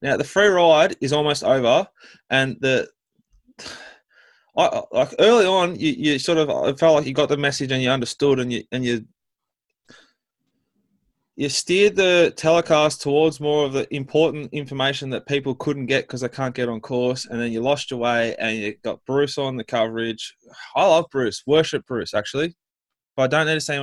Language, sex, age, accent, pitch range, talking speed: English, male, 20-39, Australian, 120-150 Hz, 190 wpm